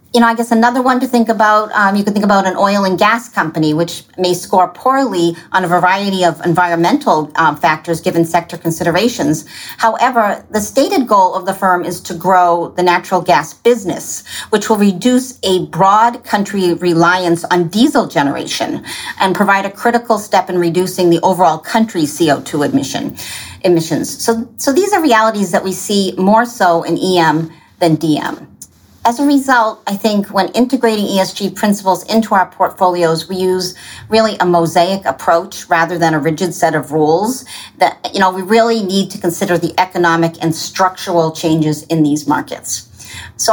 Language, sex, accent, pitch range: English, female, American, 170-215 Hz